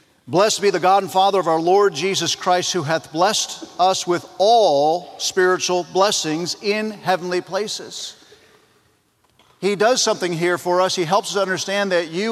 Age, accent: 50-69, American